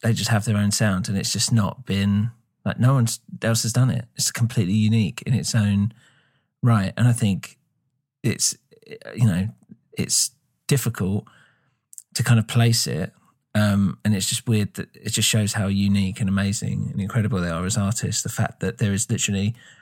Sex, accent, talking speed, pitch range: male, British, 190 wpm, 105-125 Hz